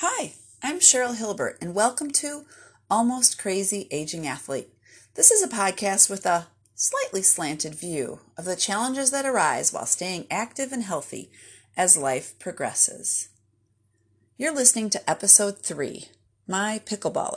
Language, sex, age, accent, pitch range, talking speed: English, female, 30-49, American, 150-240 Hz, 140 wpm